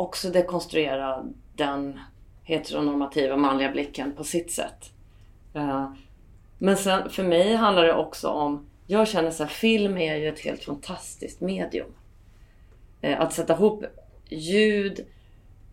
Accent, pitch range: native, 155-220 Hz